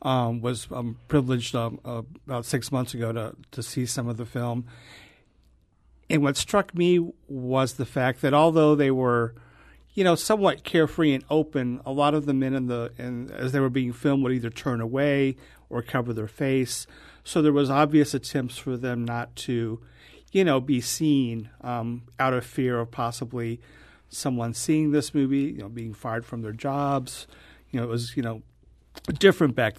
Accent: American